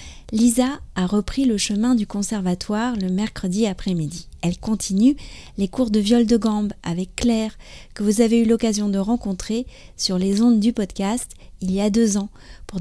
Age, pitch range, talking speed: 30-49, 190-240 Hz, 180 wpm